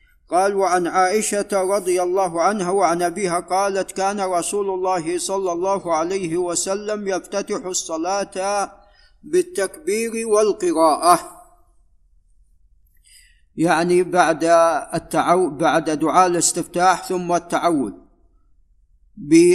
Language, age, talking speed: Arabic, 50-69, 90 wpm